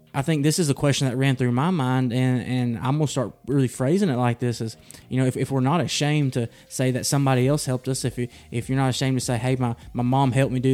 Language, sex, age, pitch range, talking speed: English, male, 20-39, 125-140 Hz, 285 wpm